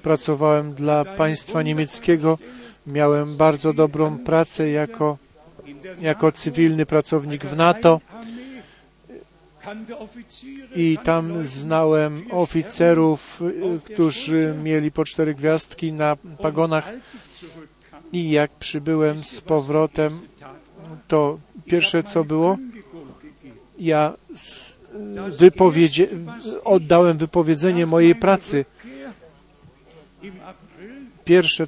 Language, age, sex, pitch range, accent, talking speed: Polish, 50-69, male, 155-185 Hz, native, 75 wpm